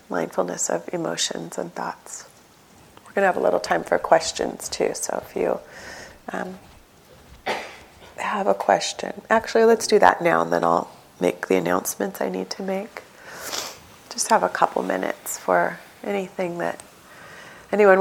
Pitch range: 155-195 Hz